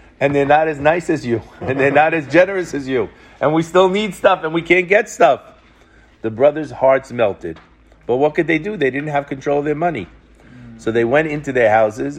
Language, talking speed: English, 225 wpm